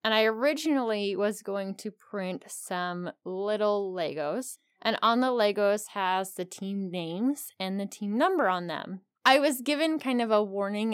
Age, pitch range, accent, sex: 20-39, 180-225 Hz, American, female